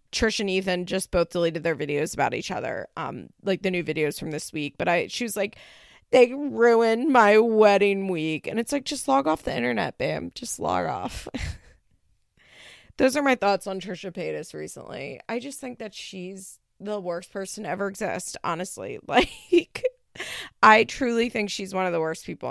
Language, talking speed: English, 190 wpm